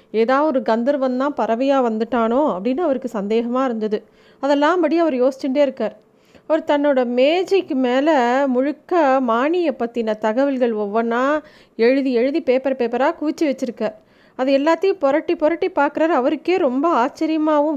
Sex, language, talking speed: female, Tamil, 125 wpm